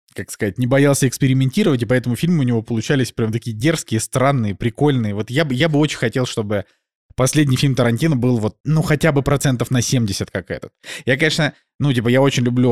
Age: 20-39